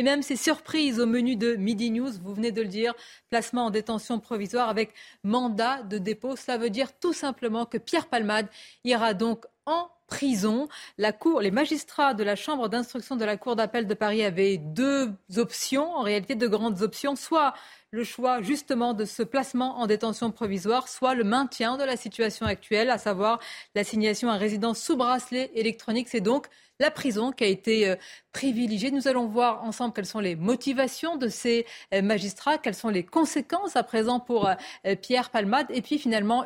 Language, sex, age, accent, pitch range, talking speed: French, female, 40-59, French, 215-255 Hz, 190 wpm